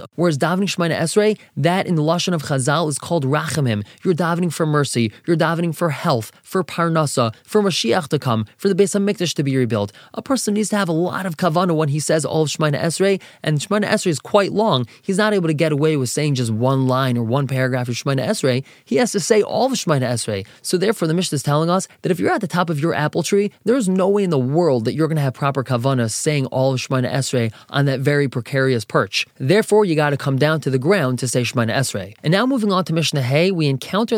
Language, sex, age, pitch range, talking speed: English, male, 20-39, 135-190 Hz, 255 wpm